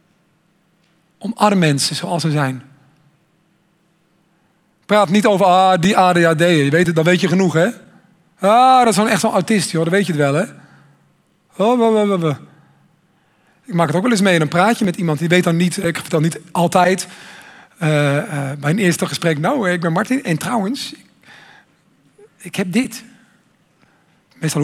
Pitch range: 165-205 Hz